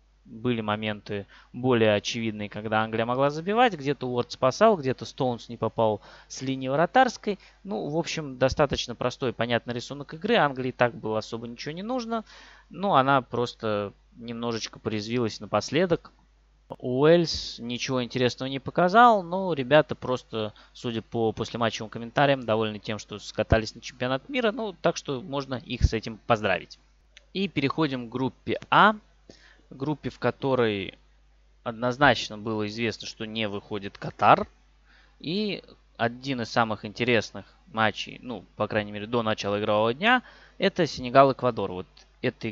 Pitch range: 110-145 Hz